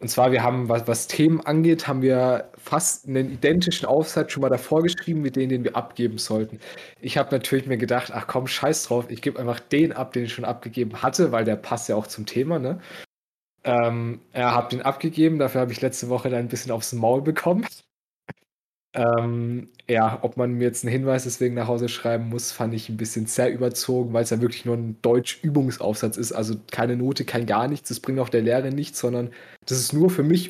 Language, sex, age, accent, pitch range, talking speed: German, male, 20-39, German, 115-135 Hz, 220 wpm